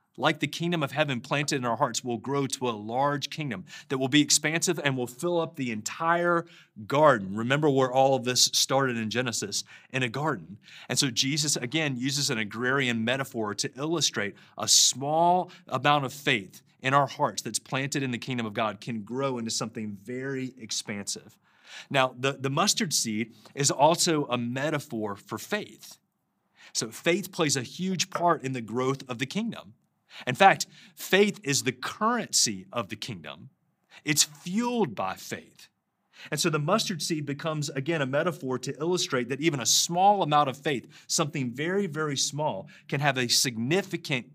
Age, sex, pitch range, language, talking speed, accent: 30-49, male, 125-160 Hz, English, 175 wpm, American